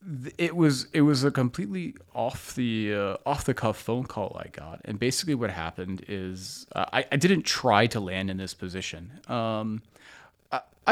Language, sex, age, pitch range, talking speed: English, male, 30-49, 95-120 Hz, 180 wpm